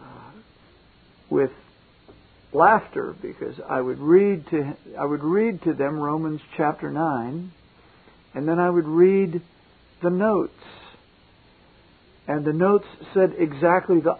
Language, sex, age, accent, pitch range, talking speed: English, male, 60-79, American, 155-205 Hz, 120 wpm